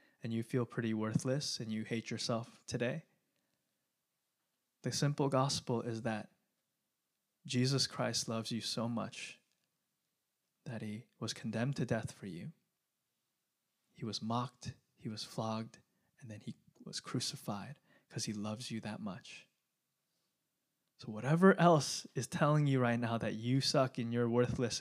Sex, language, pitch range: male, English, 115-135 Hz